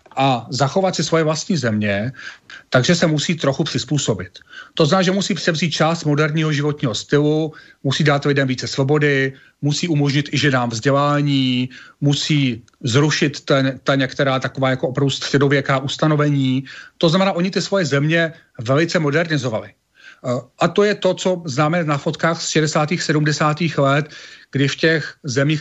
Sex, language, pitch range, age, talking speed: male, Slovak, 130-155 Hz, 40-59, 150 wpm